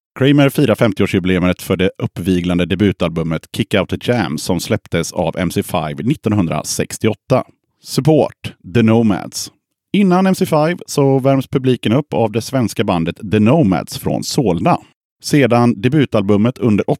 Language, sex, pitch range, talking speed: Swedish, male, 95-130 Hz, 130 wpm